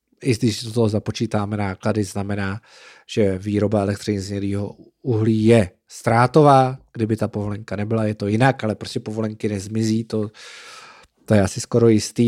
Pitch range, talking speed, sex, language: 110-130 Hz, 155 wpm, male, Czech